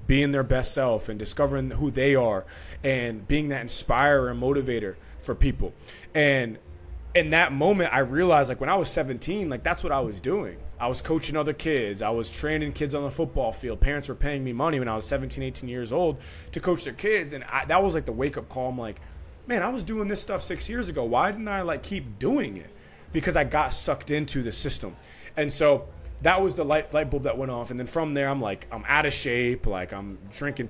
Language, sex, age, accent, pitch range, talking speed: English, male, 20-39, American, 120-155 Hz, 235 wpm